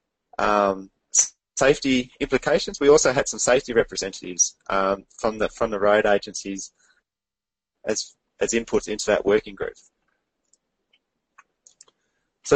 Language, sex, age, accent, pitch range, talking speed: English, male, 20-39, Australian, 100-135 Hz, 115 wpm